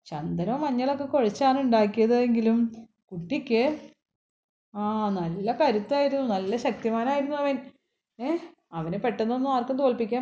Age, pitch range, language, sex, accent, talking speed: 30-49, 205-275 Hz, Malayalam, female, native, 95 wpm